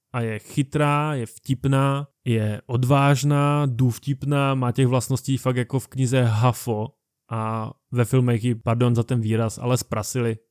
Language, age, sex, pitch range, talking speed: Czech, 20-39, male, 115-135 Hz, 150 wpm